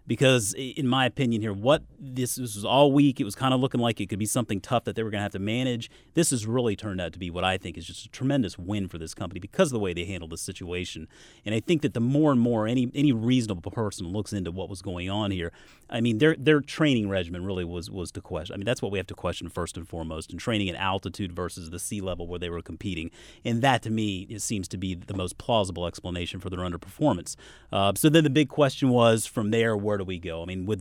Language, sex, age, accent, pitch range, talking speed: English, male, 30-49, American, 95-125 Hz, 275 wpm